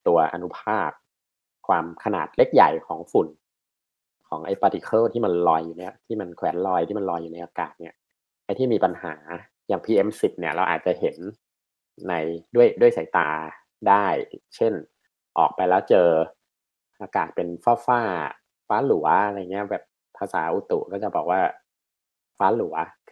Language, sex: Thai, male